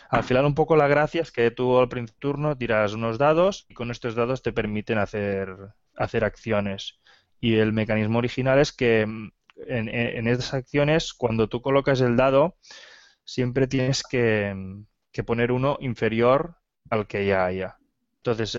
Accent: Spanish